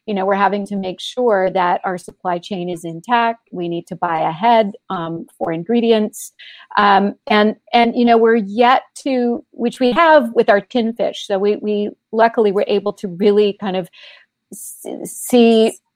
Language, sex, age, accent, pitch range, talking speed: English, female, 40-59, American, 180-215 Hz, 175 wpm